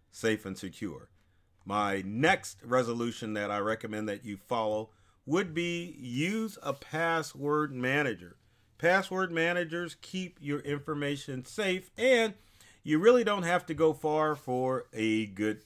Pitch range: 110-160 Hz